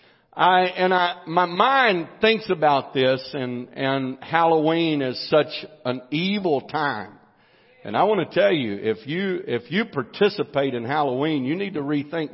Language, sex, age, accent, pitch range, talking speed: English, male, 50-69, American, 130-165 Hz, 160 wpm